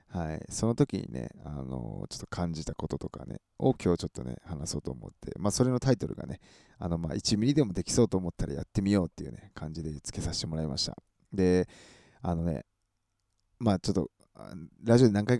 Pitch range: 85-120 Hz